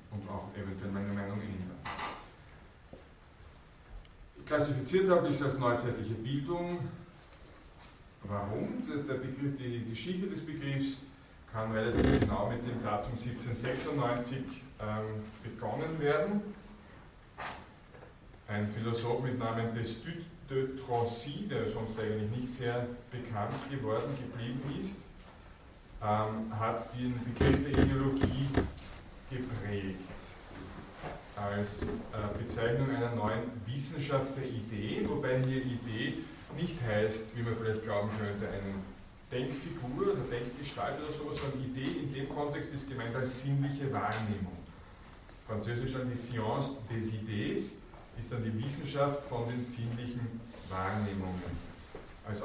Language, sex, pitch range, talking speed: German, male, 105-135 Hz, 115 wpm